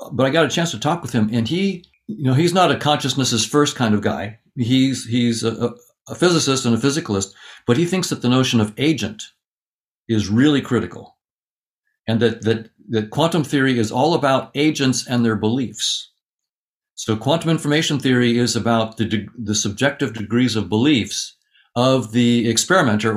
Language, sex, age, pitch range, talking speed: English, male, 60-79, 115-145 Hz, 180 wpm